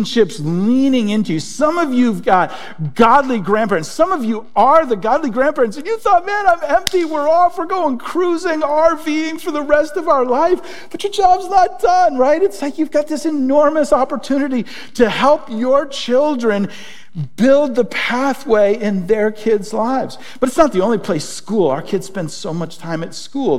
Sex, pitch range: male, 155-255 Hz